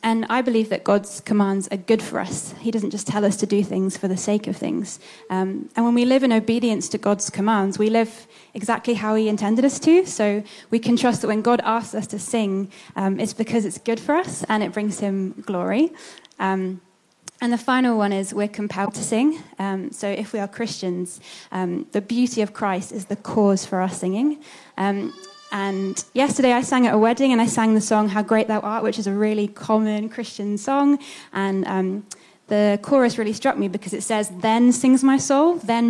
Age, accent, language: 20-39, British, English